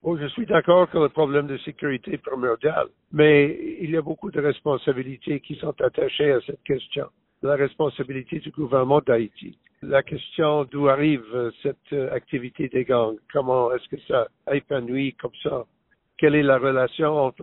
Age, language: 60-79, French